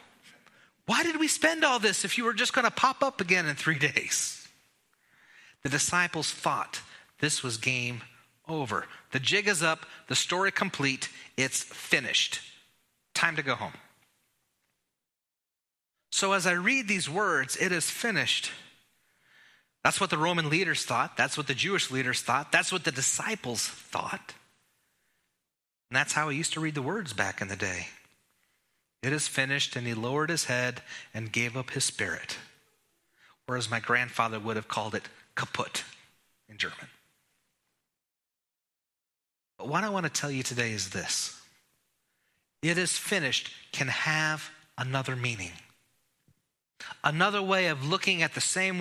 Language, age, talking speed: English, 30-49, 150 wpm